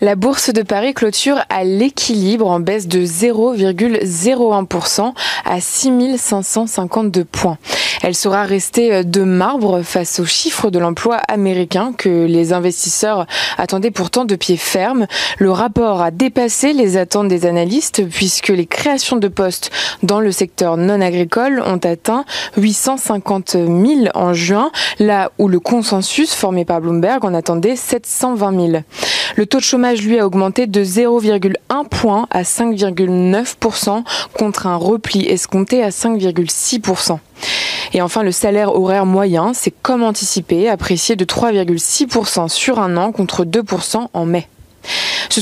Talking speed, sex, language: 140 wpm, female, French